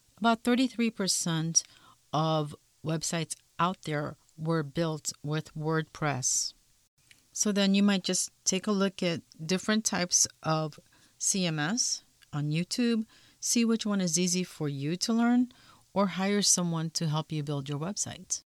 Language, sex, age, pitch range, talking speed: English, female, 50-69, 155-195 Hz, 140 wpm